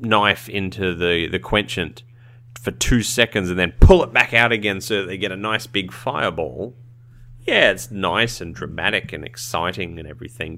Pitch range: 95-120 Hz